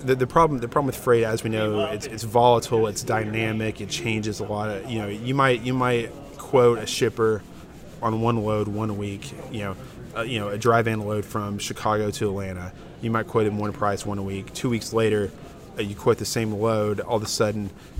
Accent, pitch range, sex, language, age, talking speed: American, 105-120 Hz, male, English, 20-39, 225 wpm